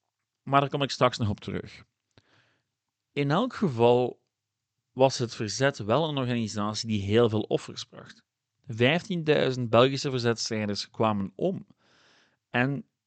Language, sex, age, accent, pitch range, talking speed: Dutch, male, 40-59, Dutch, 110-145 Hz, 130 wpm